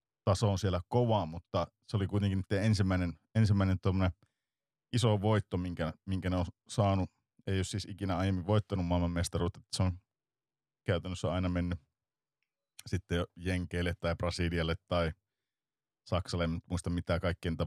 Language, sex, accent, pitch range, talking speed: Finnish, male, native, 85-110 Hz, 145 wpm